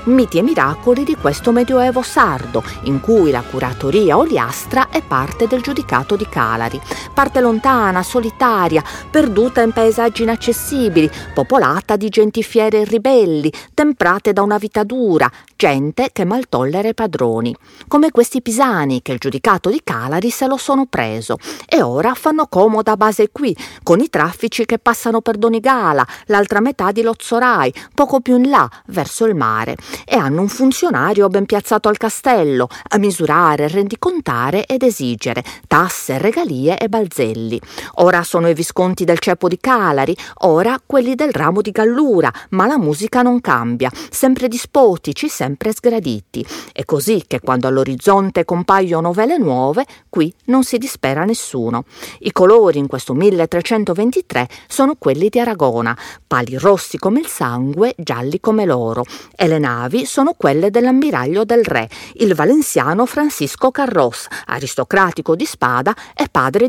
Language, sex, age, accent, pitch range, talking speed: Italian, female, 40-59, native, 160-250 Hz, 145 wpm